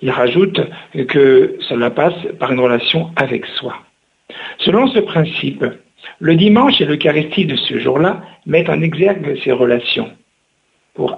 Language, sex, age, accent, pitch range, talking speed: French, male, 60-79, French, 135-200 Hz, 140 wpm